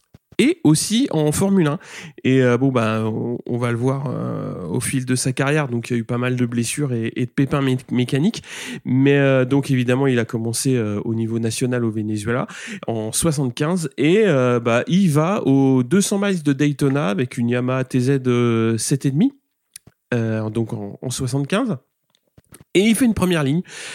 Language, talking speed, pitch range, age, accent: French, 175 wpm, 125-155 Hz, 30-49, French